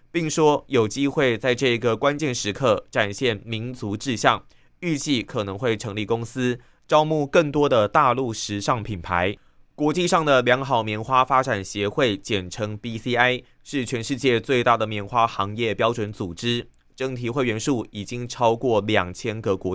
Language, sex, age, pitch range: Chinese, male, 20-39, 105-135 Hz